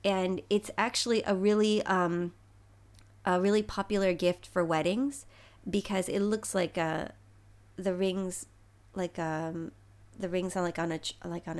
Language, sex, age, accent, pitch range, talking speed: English, female, 30-49, American, 155-225 Hz, 150 wpm